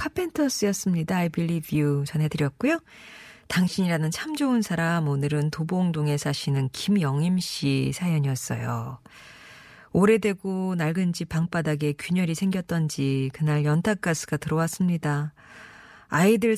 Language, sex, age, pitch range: Korean, female, 40-59, 155-210 Hz